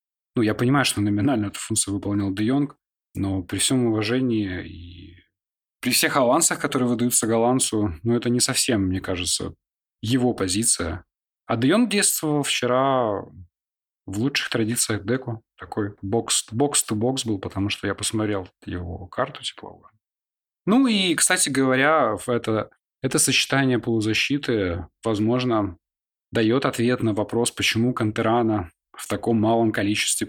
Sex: male